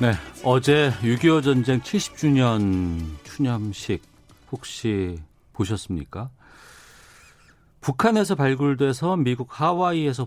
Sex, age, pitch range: male, 40-59, 90-130 Hz